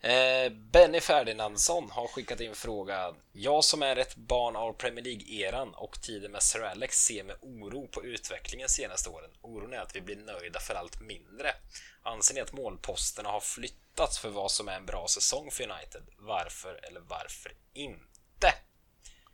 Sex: male